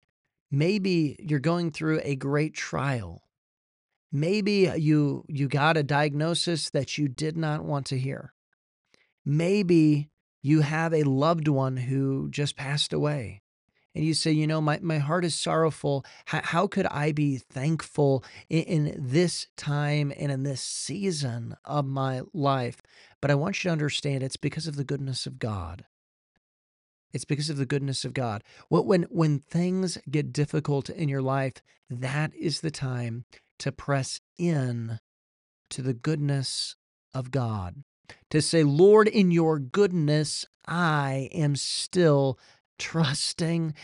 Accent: American